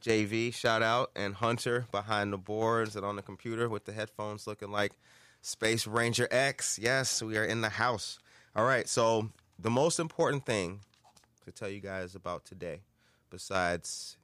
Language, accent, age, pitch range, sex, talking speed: English, American, 30-49, 90-110 Hz, male, 170 wpm